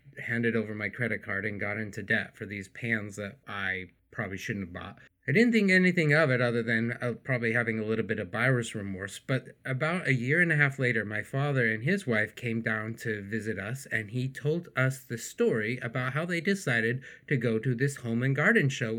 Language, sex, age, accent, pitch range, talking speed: English, male, 30-49, American, 115-160 Hz, 225 wpm